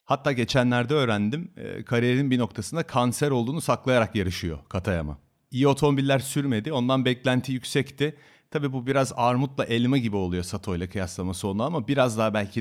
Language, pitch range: Turkish, 100-125 Hz